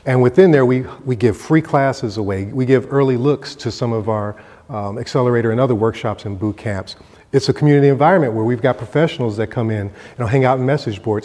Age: 40-59